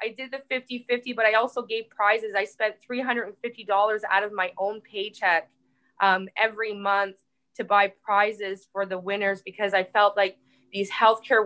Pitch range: 195-225 Hz